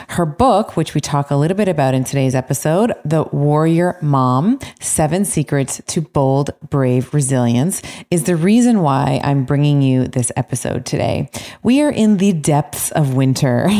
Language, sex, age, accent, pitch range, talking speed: English, female, 30-49, American, 140-180 Hz, 165 wpm